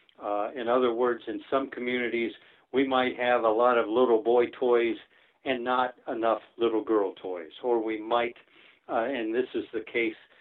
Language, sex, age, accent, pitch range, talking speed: English, male, 60-79, American, 110-125 Hz, 180 wpm